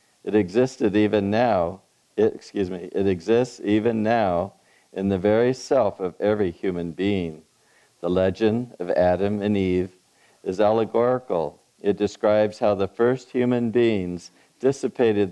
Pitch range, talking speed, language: 100-115 Hz, 135 wpm, English